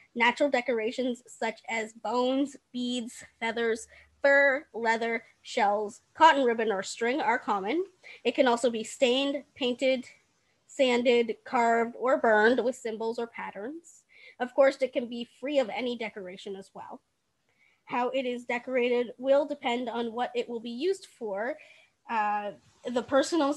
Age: 20-39